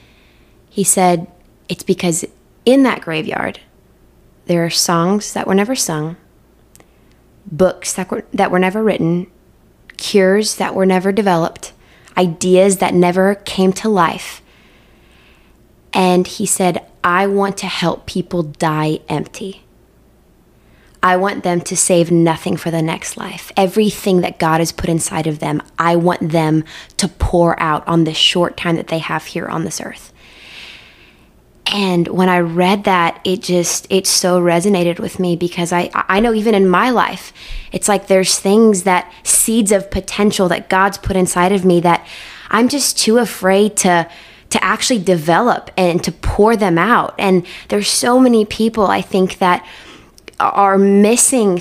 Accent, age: American, 20-39